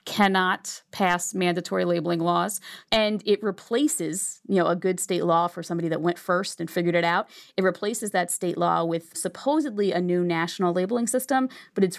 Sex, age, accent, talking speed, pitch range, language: female, 30-49, American, 185 wpm, 170-195 Hz, English